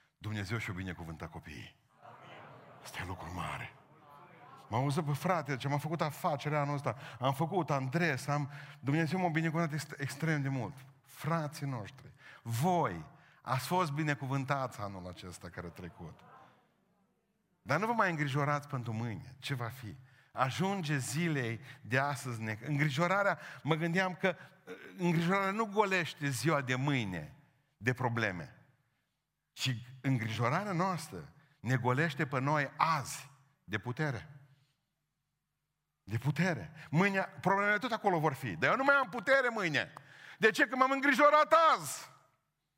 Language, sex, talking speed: Romanian, male, 135 wpm